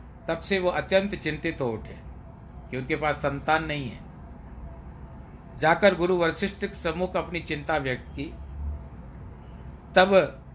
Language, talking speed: Hindi, 125 wpm